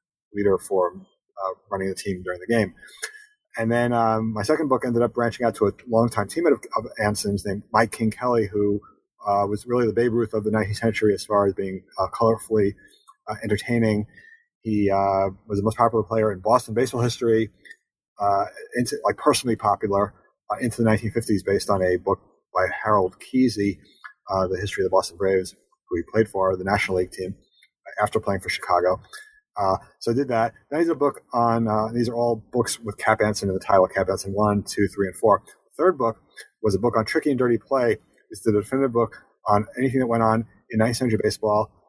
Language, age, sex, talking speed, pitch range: English, 30-49, male, 210 wpm, 100-120 Hz